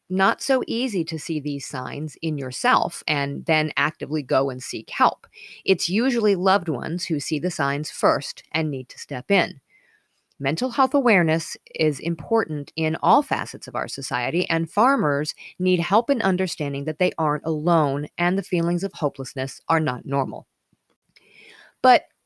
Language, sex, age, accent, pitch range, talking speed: English, female, 40-59, American, 155-220 Hz, 160 wpm